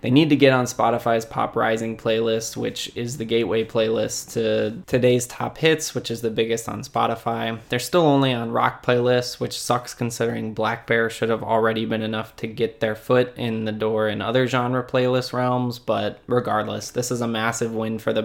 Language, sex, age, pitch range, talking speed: English, male, 20-39, 115-130 Hz, 200 wpm